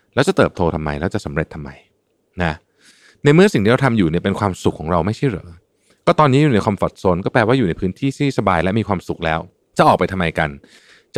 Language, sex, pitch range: Thai, male, 85-130 Hz